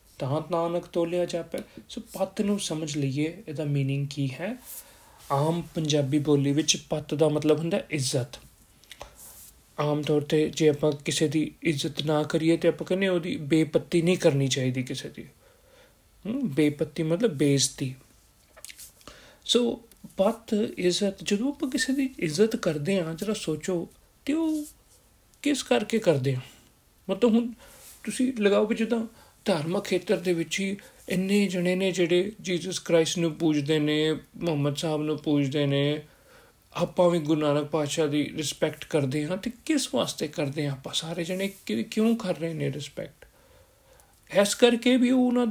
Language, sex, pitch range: Punjabi, male, 155-215 Hz